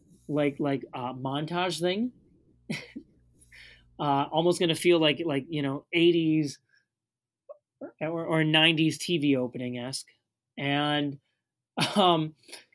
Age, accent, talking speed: 30-49, American, 105 wpm